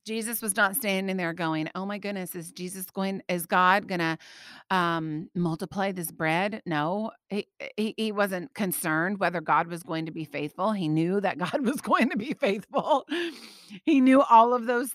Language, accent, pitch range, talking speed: English, American, 170-220 Hz, 185 wpm